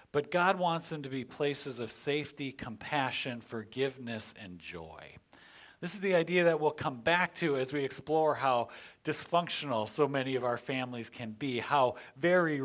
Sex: male